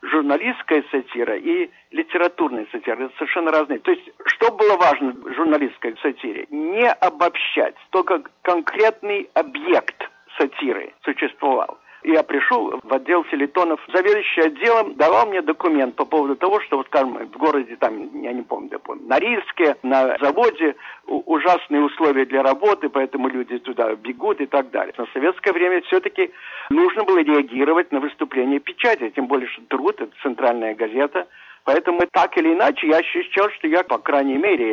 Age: 60-79